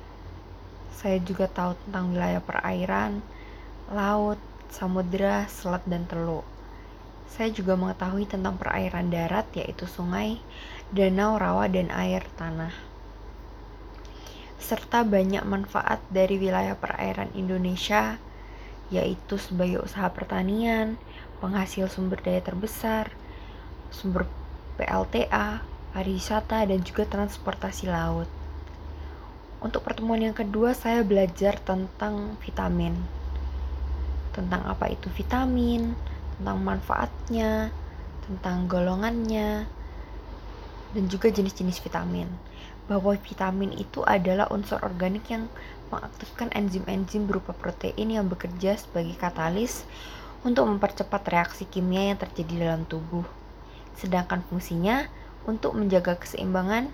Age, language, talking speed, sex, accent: 20-39, Indonesian, 100 wpm, female, native